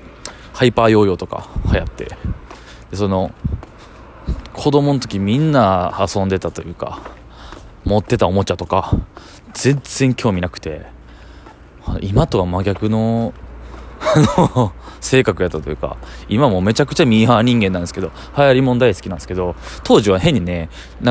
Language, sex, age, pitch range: Japanese, male, 20-39, 90-130 Hz